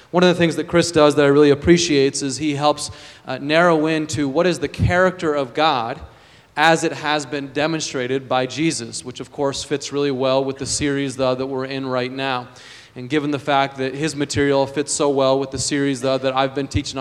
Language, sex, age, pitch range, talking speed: English, male, 30-49, 130-150 Hz, 220 wpm